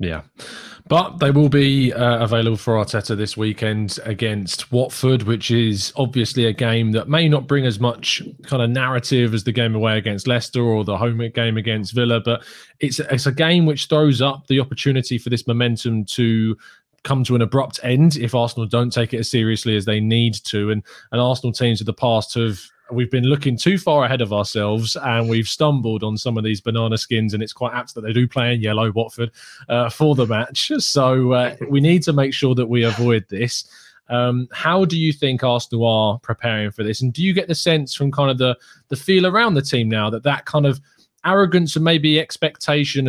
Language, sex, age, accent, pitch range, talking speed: English, male, 20-39, British, 115-140 Hz, 215 wpm